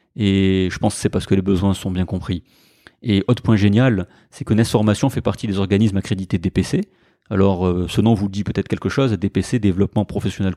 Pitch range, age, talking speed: 95-115 Hz, 30-49, 210 wpm